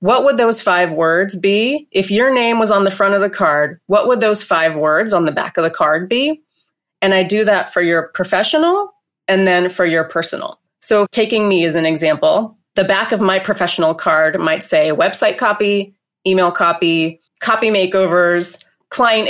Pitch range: 170-225 Hz